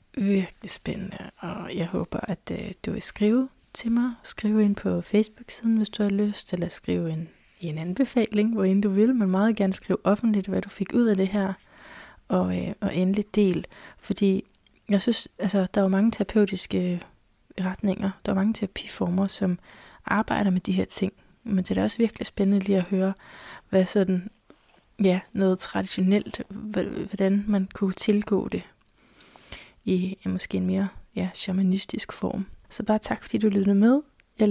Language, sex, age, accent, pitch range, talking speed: Danish, female, 20-39, native, 190-215 Hz, 170 wpm